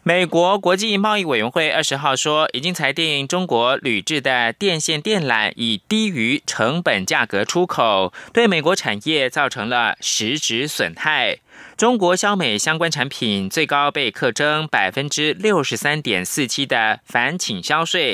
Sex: male